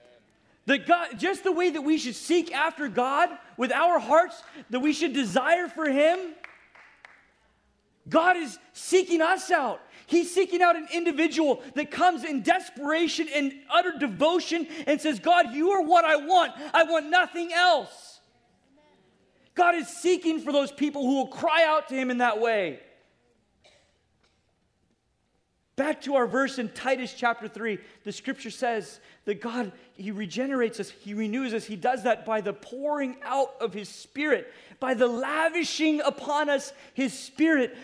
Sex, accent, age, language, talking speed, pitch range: male, American, 30-49, English, 160 wpm, 240-330 Hz